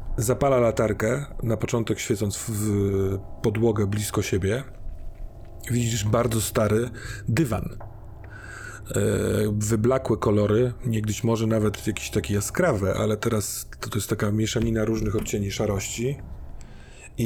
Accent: native